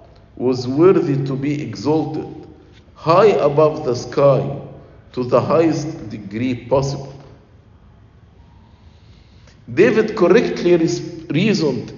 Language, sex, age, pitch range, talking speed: English, male, 50-69, 105-145 Hz, 85 wpm